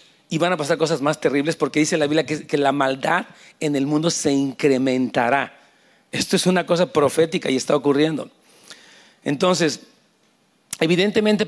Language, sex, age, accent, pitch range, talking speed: Spanish, male, 40-59, Mexican, 150-195 Hz, 155 wpm